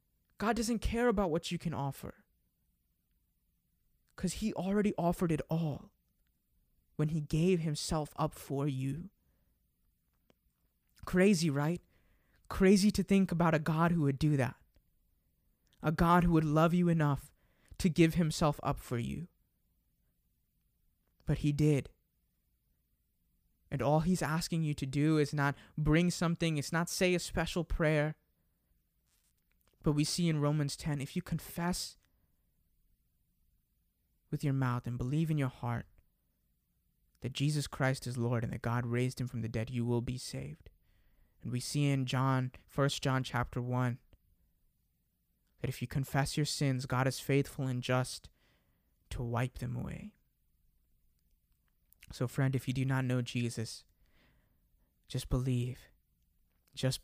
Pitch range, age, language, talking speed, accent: 115-160 Hz, 20-39, English, 140 wpm, American